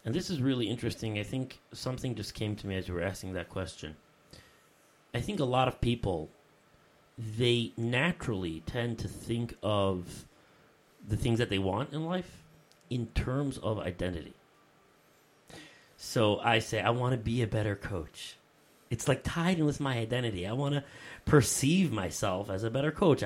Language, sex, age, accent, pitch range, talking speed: English, male, 30-49, American, 105-135 Hz, 175 wpm